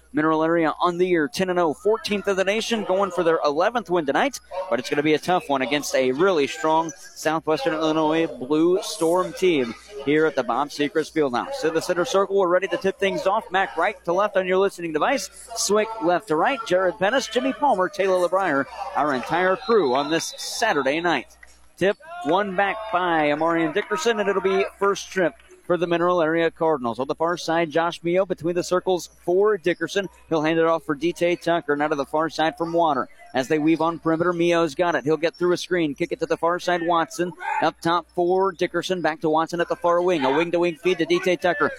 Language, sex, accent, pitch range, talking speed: English, male, American, 160-195 Hz, 220 wpm